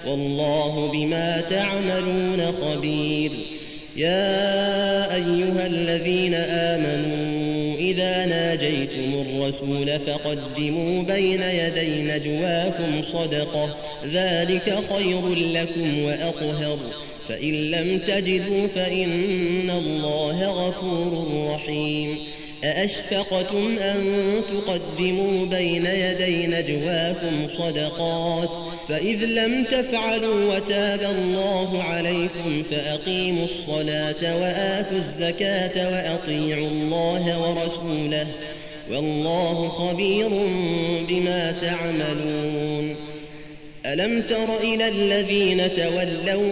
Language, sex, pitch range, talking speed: Arabic, male, 150-185 Hz, 70 wpm